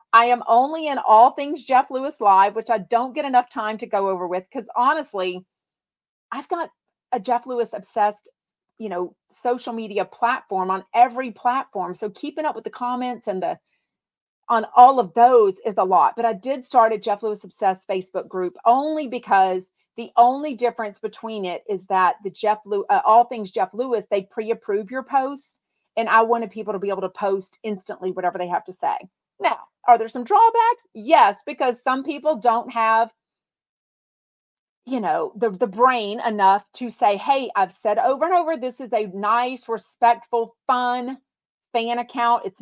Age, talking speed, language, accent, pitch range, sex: 40-59, 185 wpm, English, American, 205-255 Hz, female